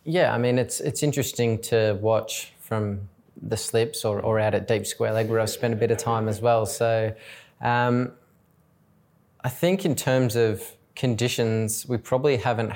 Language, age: English, 20-39